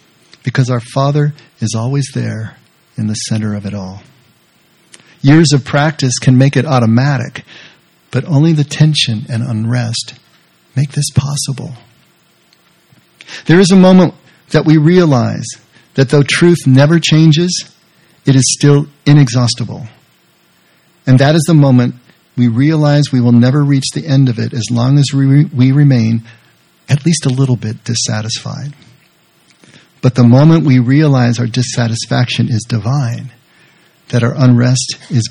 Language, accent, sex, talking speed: English, American, male, 145 wpm